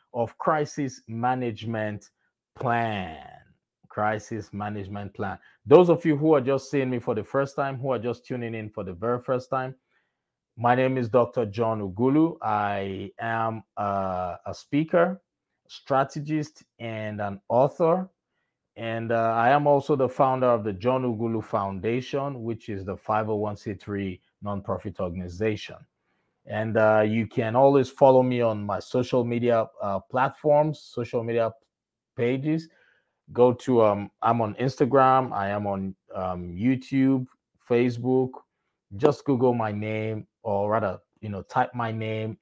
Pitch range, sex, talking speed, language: 105-130 Hz, male, 145 wpm, English